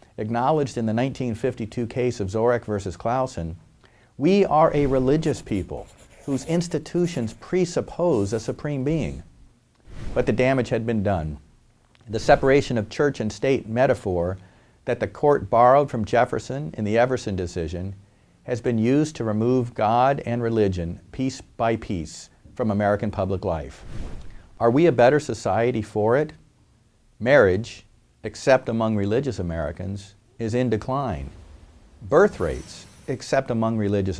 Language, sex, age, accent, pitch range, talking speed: English, male, 50-69, American, 95-125 Hz, 135 wpm